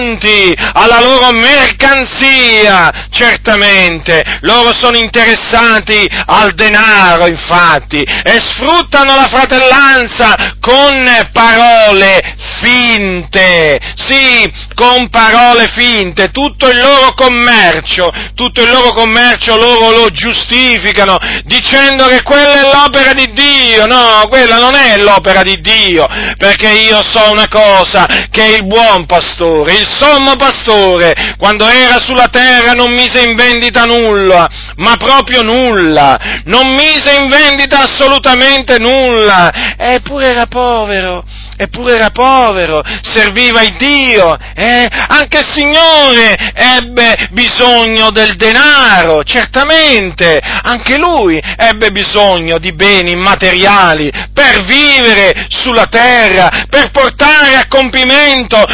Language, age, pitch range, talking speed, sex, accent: Italian, 40-59, 210-270 Hz, 110 wpm, male, native